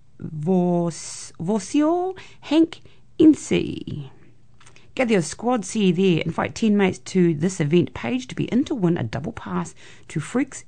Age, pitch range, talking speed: 40-59, 130-195 Hz, 140 wpm